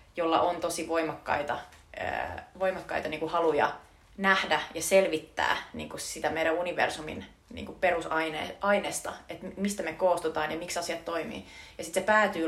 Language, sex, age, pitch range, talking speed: Finnish, female, 20-39, 155-180 Hz, 150 wpm